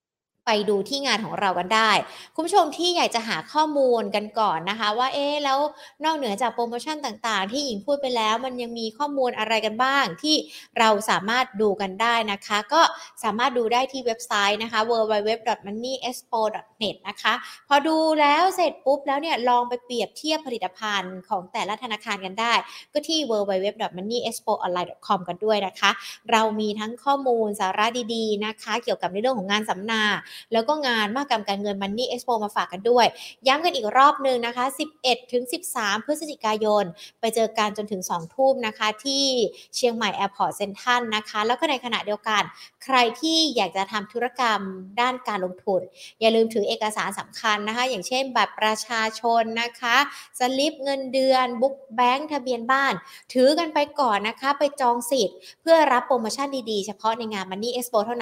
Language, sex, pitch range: Thai, female, 210-260 Hz